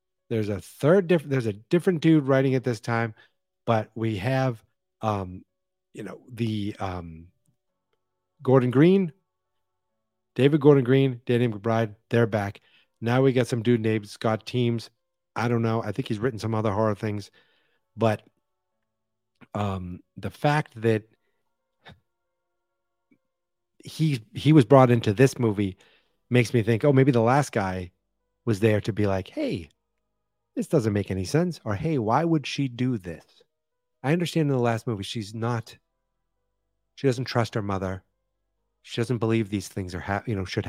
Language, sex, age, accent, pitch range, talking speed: English, male, 40-59, American, 105-135 Hz, 160 wpm